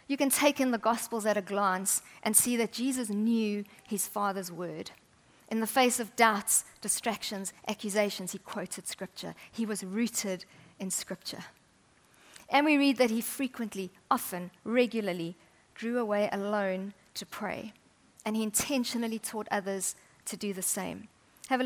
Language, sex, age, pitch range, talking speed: English, female, 40-59, 195-235 Hz, 155 wpm